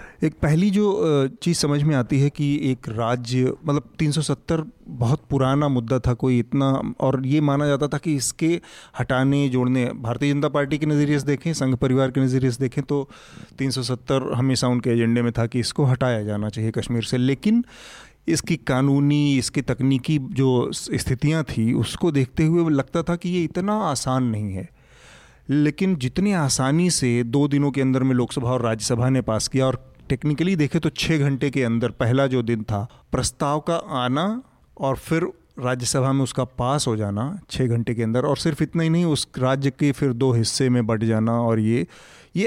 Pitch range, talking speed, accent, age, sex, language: 125-150 Hz, 190 wpm, native, 30-49, male, Hindi